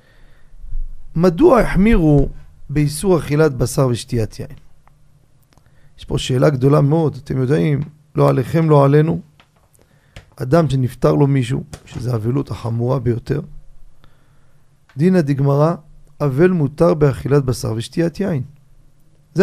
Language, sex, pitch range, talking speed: Hebrew, male, 135-175 Hz, 110 wpm